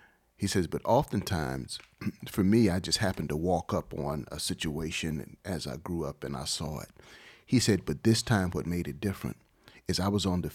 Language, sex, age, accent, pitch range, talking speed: English, male, 40-59, American, 85-105 Hz, 210 wpm